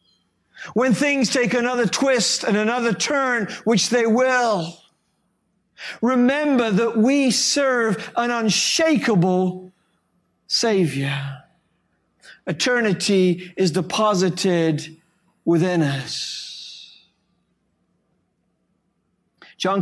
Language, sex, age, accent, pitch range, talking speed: English, male, 50-69, American, 185-250 Hz, 75 wpm